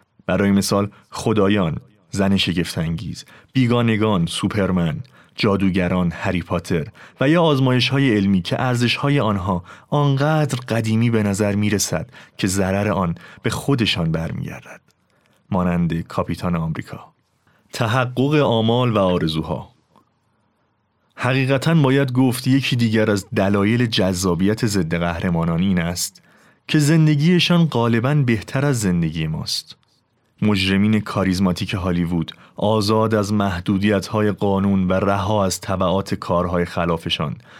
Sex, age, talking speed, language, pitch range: male, 30-49, 105 wpm, Persian, 95-130 Hz